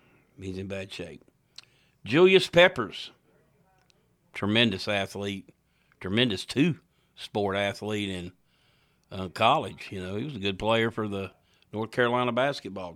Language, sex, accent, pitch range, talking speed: English, male, American, 100-130 Hz, 120 wpm